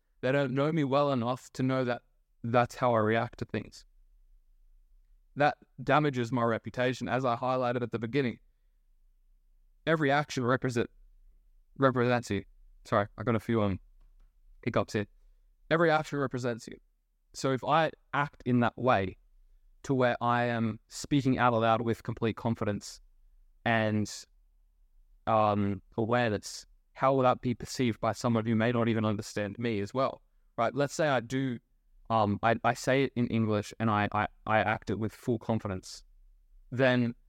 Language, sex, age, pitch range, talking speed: English, male, 20-39, 105-130 Hz, 160 wpm